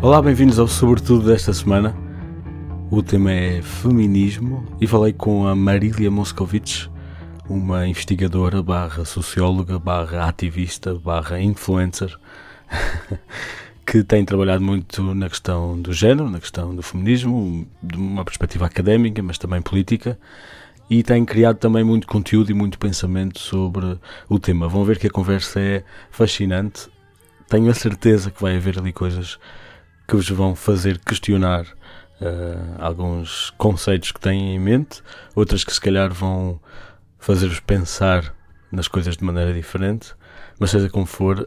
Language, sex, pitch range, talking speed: Portuguese, male, 90-100 Hz, 140 wpm